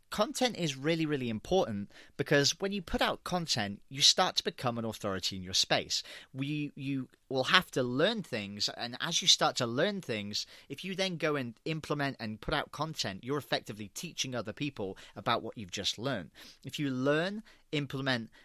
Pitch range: 110-155 Hz